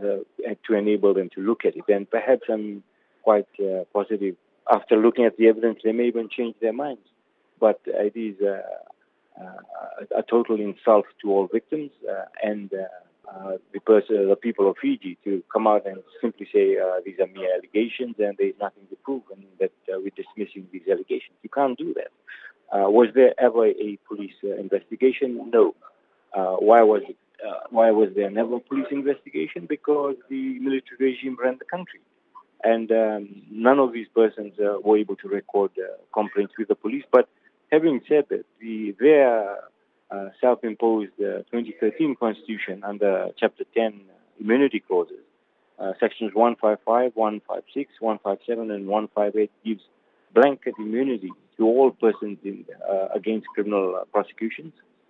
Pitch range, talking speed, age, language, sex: 105-140 Hz, 160 wpm, 40-59, English, male